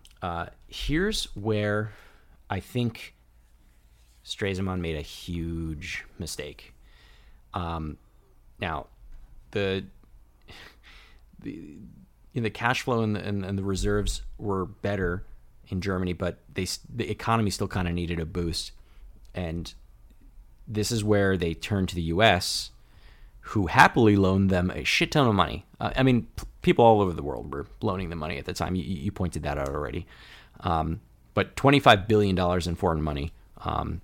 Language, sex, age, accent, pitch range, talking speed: English, male, 30-49, American, 85-105 Hz, 145 wpm